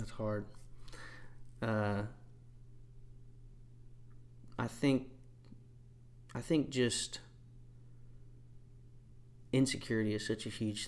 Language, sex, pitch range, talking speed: English, male, 105-120 Hz, 70 wpm